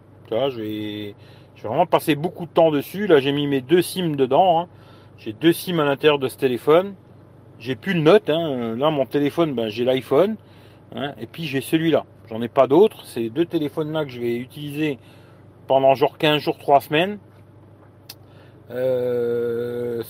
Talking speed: 180 wpm